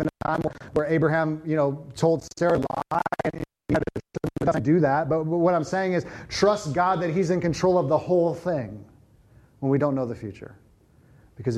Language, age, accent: English, 30-49, American